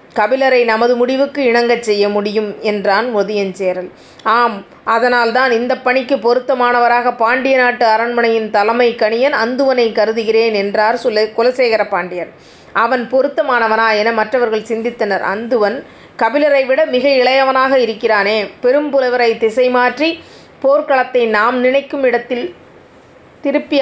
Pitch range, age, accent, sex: 215-255 Hz, 30-49, native, female